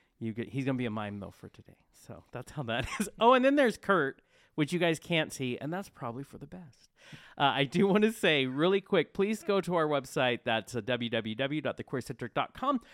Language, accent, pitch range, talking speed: English, American, 125-170 Hz, 220 wpm